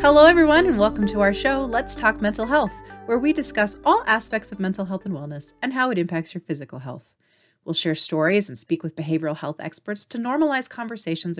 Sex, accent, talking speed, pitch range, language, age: female, American, 210 wpm, 160-220 Hz, English, 30-49